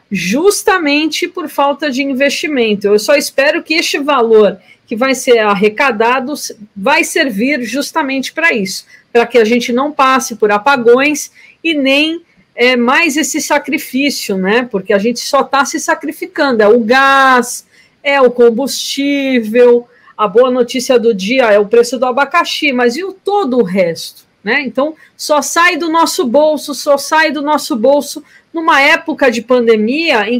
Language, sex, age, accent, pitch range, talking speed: Portuguese, female, 50-69, Brazilian, 235-300 Hz, 160 wpm